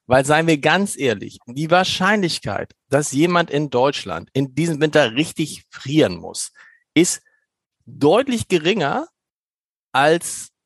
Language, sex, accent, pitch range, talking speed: German, male, German, 135-180 Hz, 120 wpm